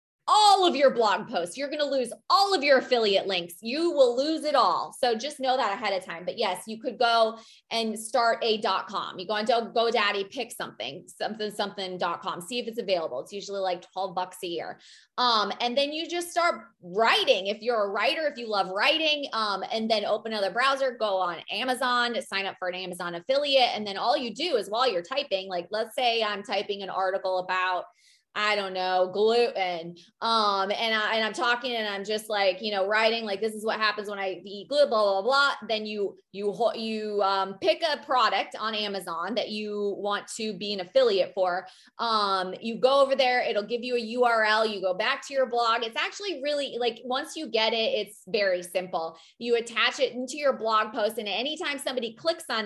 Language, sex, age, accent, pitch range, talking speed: English, female, 20-39, American, 195-255 Hz, 215 wpm